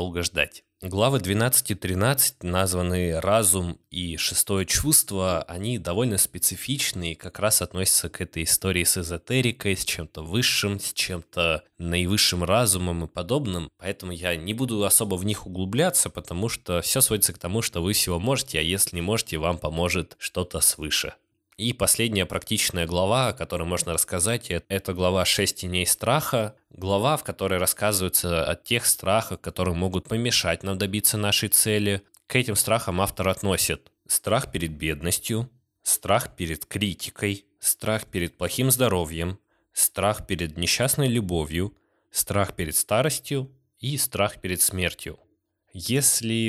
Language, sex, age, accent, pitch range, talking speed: Russian, male, 20-39, native, 90-110 Hz, 145 wpm